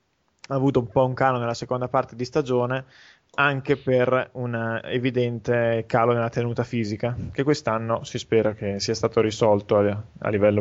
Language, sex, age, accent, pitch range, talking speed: Italian, male, 20-39, native, 110-135 Hz, 165 wpm